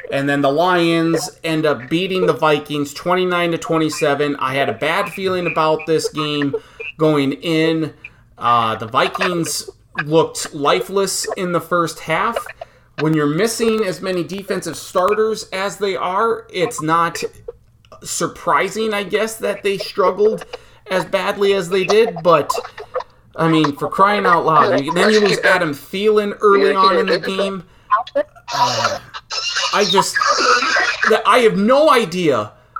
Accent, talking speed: American, 145 wpm